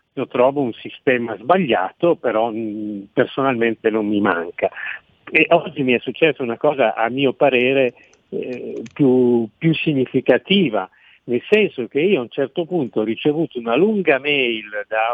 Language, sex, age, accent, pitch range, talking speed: Italian, male, 50-69, native, 125-185 Hz, 155 wpm